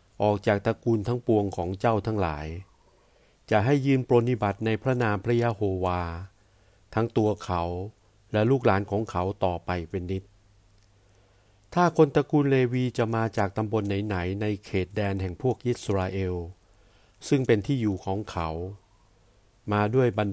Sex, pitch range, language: male, 95-120 Hz, Thai